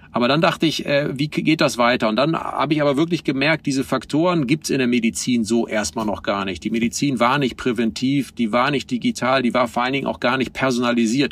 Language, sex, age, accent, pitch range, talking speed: German, male, 40-59, German, 125-155 Hz, 245 wpm